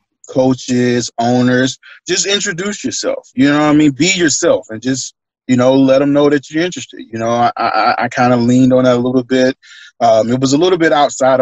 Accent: American